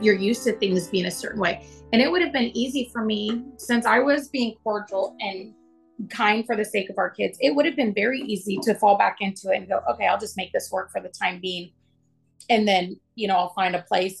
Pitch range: 185-230 Hz